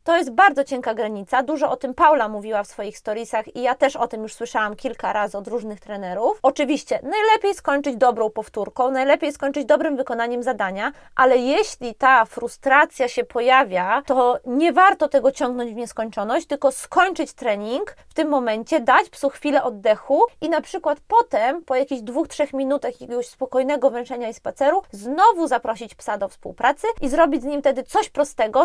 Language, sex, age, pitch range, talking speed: Polish, female, 20-39, 230-300 Hz, 175 wpm